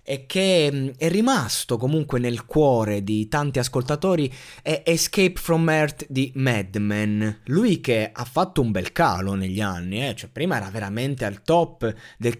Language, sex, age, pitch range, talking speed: Italian, male, 20-39, 120-165 Hz, 170 wpm